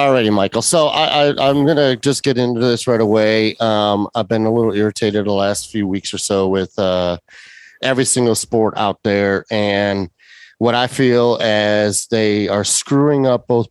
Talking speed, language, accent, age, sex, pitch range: 190 wpm, English, American, 30-49, male, 100-120 Hz